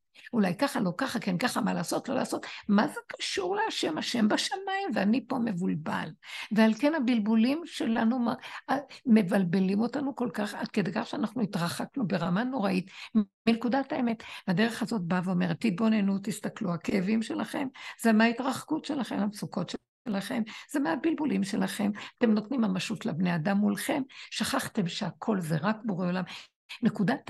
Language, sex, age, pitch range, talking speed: Hebrew, female, 60-79, 200-265 Hz, 145 wpm